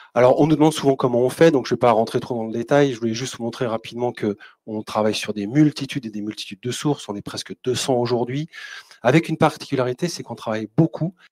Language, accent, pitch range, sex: French, French, 110-145 Hz, male